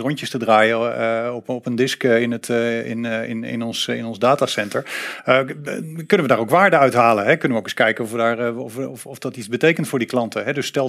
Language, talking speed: Dutch, 220 wpm